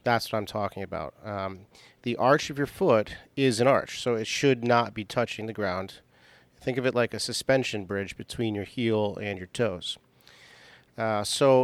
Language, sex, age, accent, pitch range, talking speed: English, male, 40-59, American, 105-125 Hz, 190 wpm